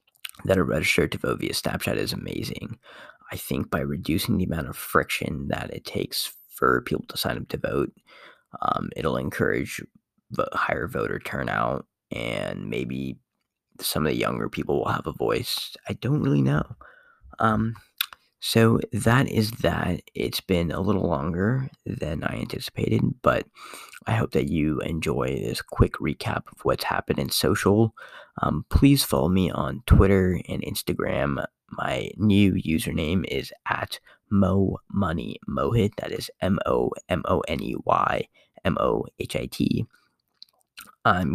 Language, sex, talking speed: English, male, 155 wpm